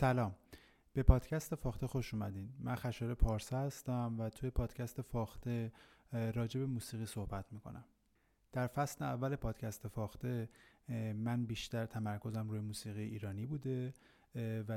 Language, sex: Persian, male